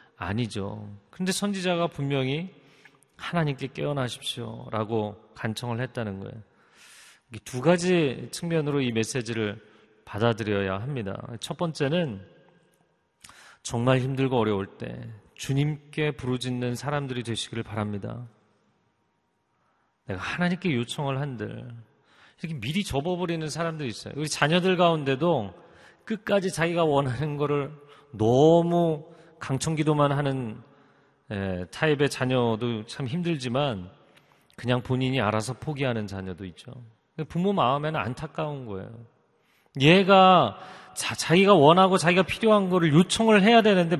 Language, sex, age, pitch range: Korean, male, 40-59, 120-170 Hz